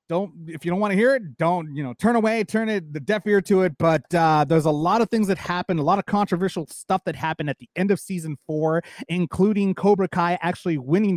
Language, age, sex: English, 30-49, male